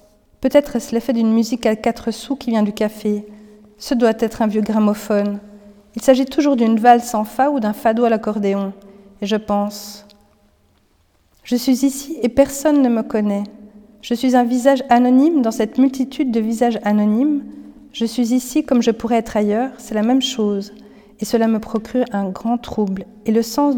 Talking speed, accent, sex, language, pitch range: 185 wpm, French, female, French, 210-255 Hz